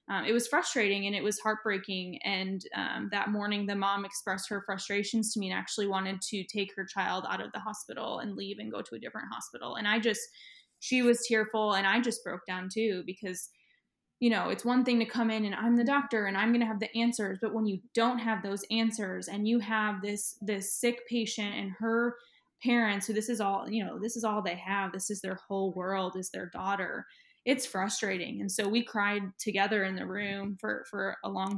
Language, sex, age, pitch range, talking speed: English, female, 20-39, 195-225 Hz, 230 wpm